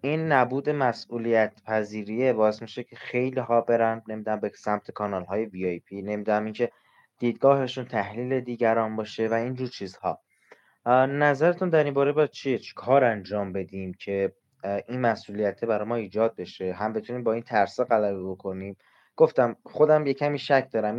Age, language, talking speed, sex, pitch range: 20-39, Persian, 155 wpm, male, 105-125 Hz